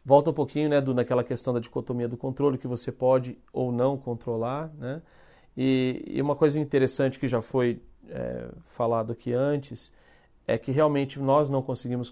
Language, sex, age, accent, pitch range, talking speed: Portuguese, male, 40-59, Brazilian, 125-155 Hz, 180 wpm